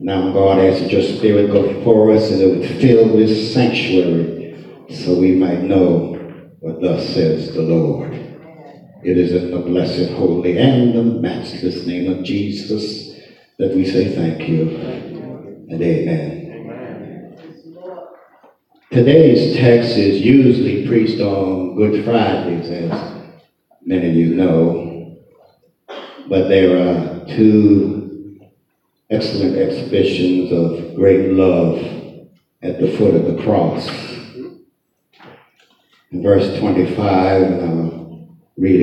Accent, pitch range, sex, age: American, 90-100 Hz, male, 60-79